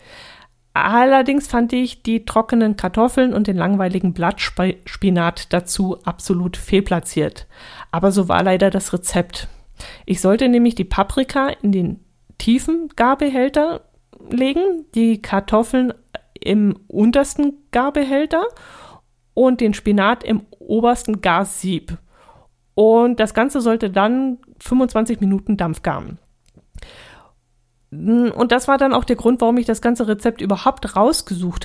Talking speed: 120 wpm